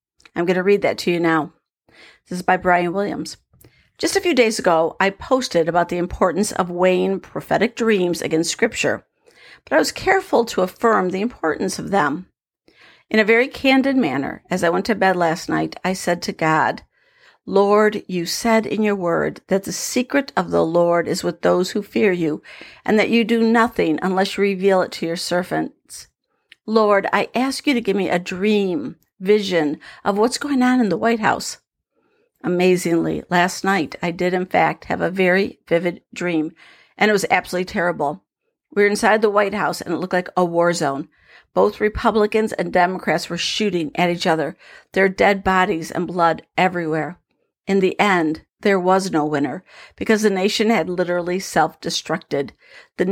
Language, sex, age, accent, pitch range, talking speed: English, female, 50-69, American, 170-215 Hz, 185 wpm